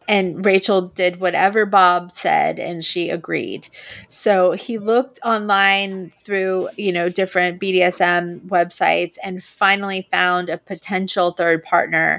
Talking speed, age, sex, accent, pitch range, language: 130 wpm, 30-49, female, American, 175-200 Hz, English